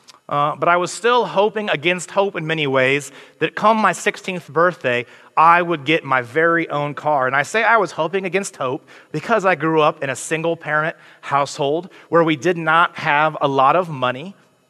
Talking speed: 195 wpm